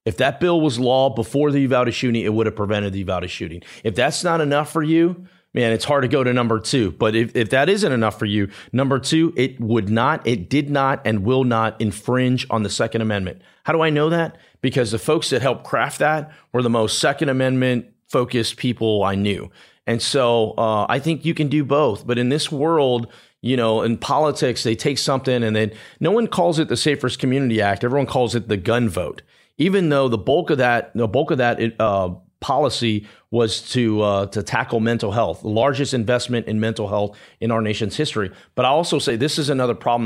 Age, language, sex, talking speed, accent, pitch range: 40-59, English, male, 220 wpm, American, 110-145 Hz